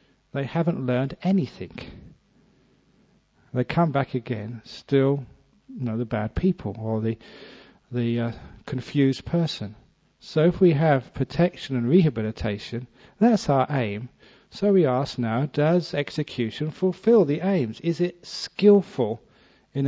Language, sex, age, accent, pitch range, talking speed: English, male, 50-69, British, 120-165 Hz, 130 wpm